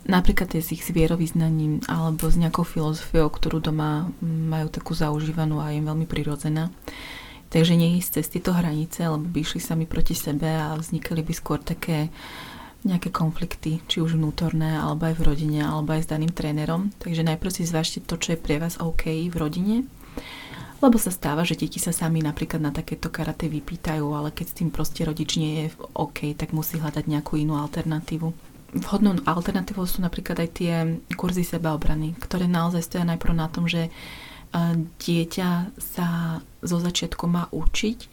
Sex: female